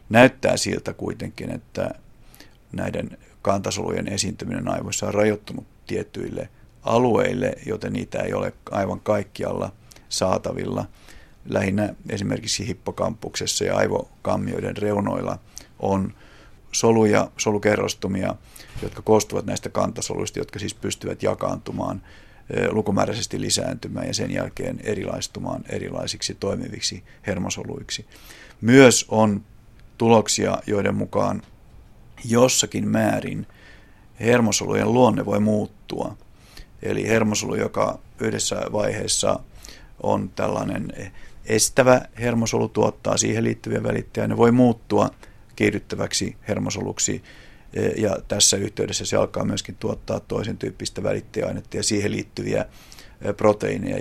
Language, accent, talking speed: Finnish, native, 95 wpm